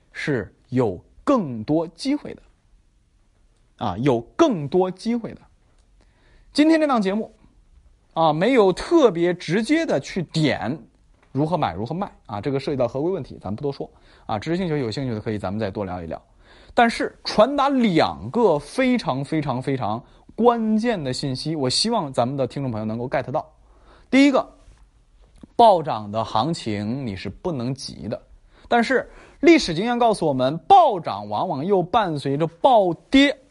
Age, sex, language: 20-39, male, Chinese